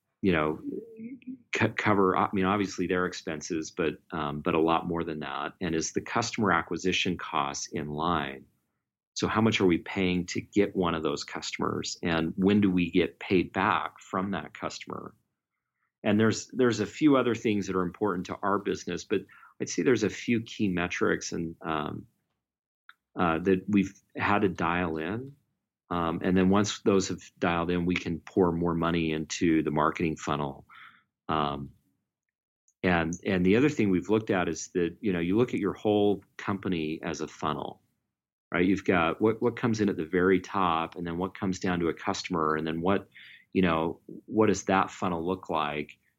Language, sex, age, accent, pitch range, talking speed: English, male, 40-59, American, 80-100 Hz, 190 wpm